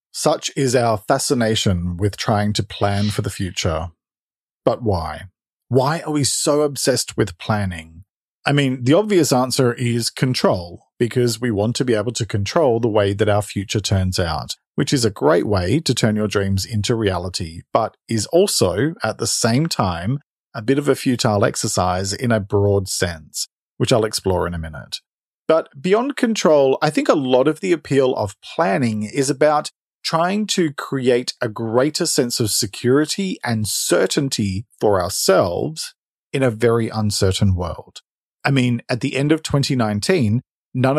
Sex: male